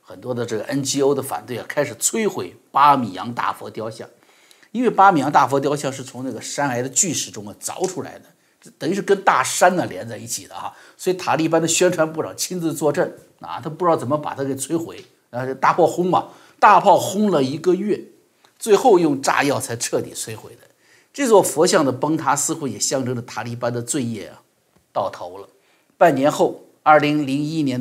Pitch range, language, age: 120-160 Hz, Chinese, 50-69